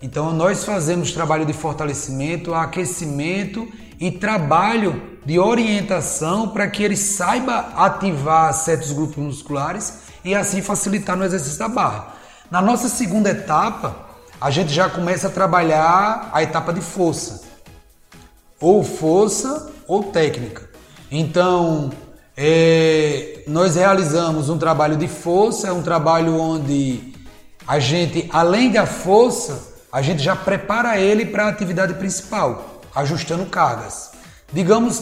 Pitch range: 160-205 Hz